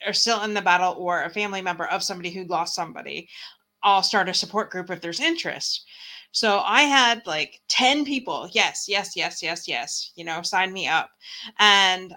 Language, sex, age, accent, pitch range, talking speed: English, female, 30-49, American, 175-250 Hz, 190 wpm